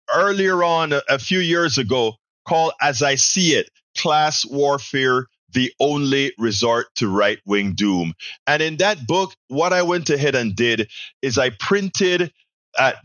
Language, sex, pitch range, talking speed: English, male, 135-195 Hz, 155 wpm